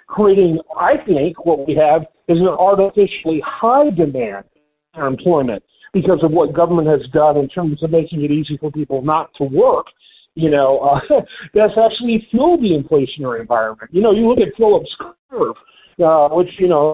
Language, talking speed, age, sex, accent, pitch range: English, 175 wpm, 50-69, male, American, 160-215 Hz